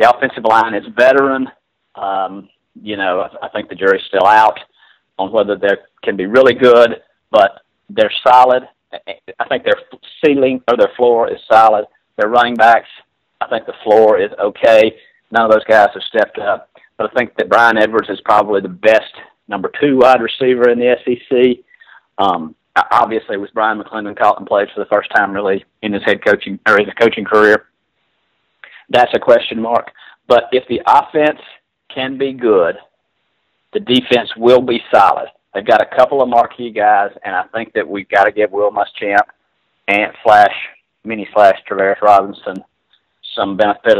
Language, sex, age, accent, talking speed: English, male, 40-59, American, 175 wpm